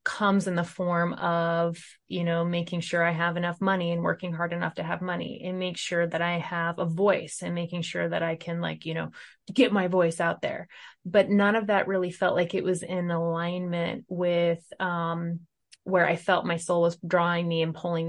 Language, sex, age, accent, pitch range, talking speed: English, female, 20-39, American, 170-185 Hz, 215 wpm